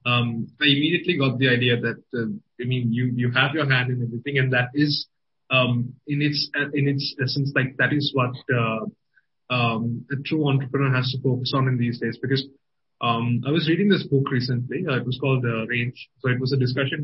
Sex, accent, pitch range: male, Indian, 125-140 Hz